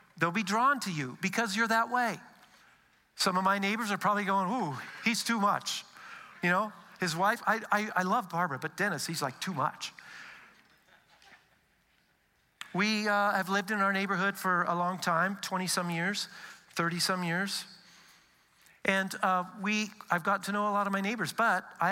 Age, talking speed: 50-69, 180 wpm